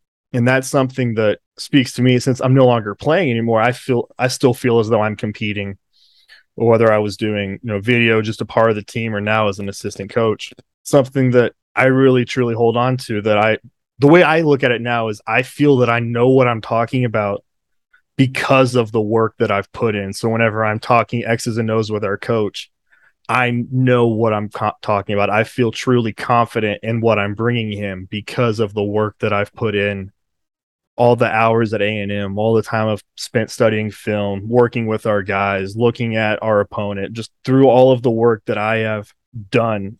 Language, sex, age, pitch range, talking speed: English, male, 20-39, 105-120 Hz, 215 wpm